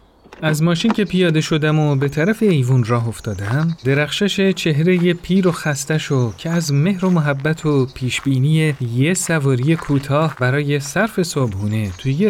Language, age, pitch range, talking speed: Persian, 30-49, 120-160 Hz, 150 wpm